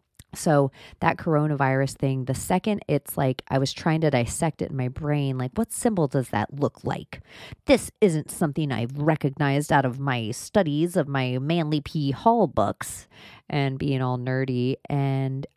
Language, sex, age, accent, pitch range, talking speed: English, female, 30-49, American, 130-160 Hz, 170 wpm